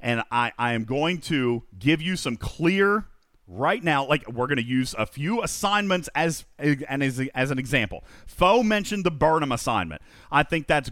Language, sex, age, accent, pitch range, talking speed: English, male, 40-59, American, 120-175 Hz, 175 wpm